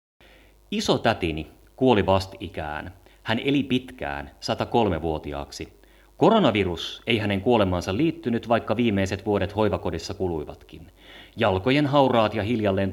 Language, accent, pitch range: Finnish, native, 90-120 Hz